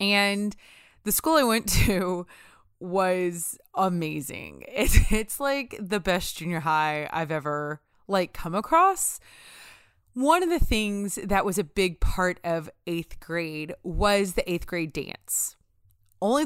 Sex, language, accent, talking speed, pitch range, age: female, English, American, 140 wpm, 170-245 Hz, 20-39